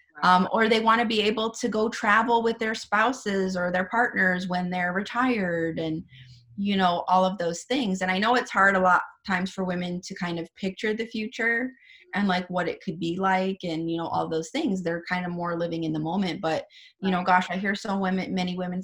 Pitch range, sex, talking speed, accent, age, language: 170-195 Hz, female, 235 wpm, American, 30-49, English